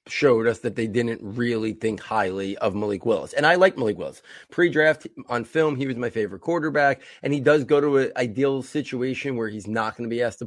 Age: 30-49